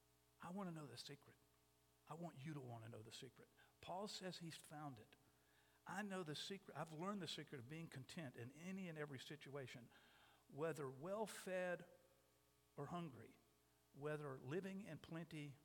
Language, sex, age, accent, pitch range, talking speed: English, male, 50-69, American, 130-195 Hz, 170 wpm